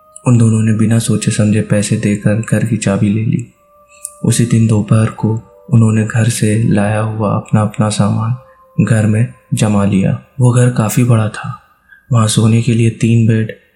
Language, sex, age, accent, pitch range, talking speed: Hindi, male, 20-39, native, 110-125 Hz, 175 wpm